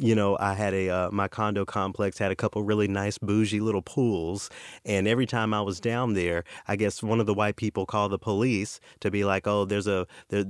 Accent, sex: American, male